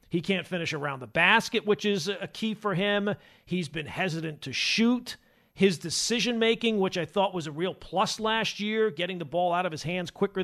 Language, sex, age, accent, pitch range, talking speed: English, male, 40-59, American, 165-210 Hz, 205 wpm